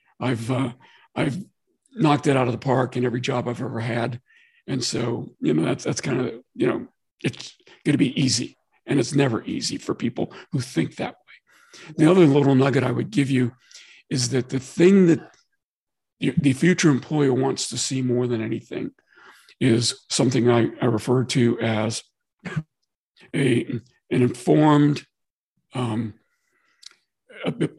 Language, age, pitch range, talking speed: English, 50-69, 120-155 Hz, 155 wpm